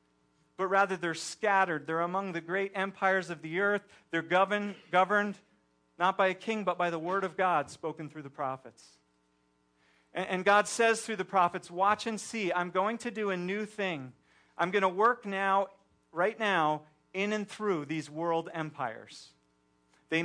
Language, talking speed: English, 170 wpm